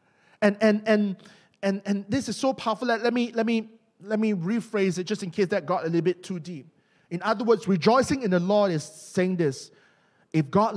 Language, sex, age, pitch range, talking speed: English, male, 20-39, 160-235 Hz, 225 wpm